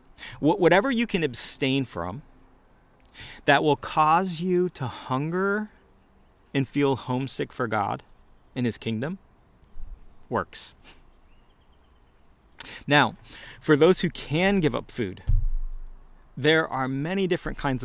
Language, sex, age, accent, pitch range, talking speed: English, male, 30-49, American, 115-150 Hz, 110 wpm